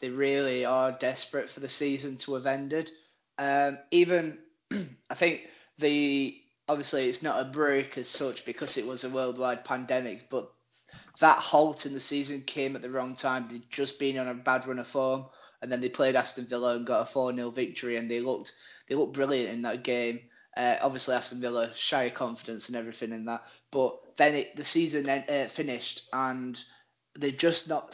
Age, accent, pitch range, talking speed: 20-39, British, 125-140 Hz, 195 wpm